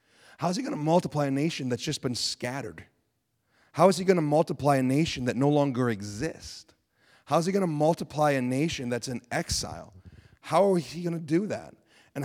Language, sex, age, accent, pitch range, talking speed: English, male, 30-49, American, 115-145 Hz, 210 wpm